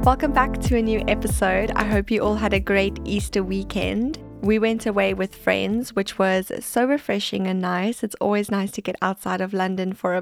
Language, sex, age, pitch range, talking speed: English, female, 20-39, 190-220 Hz, 210 wpm